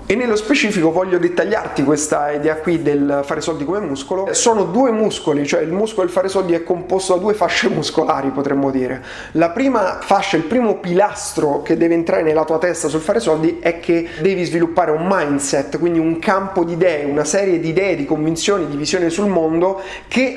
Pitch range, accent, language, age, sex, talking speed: 155-190 Hz, native, Italian, 30-49, male, 195 wpm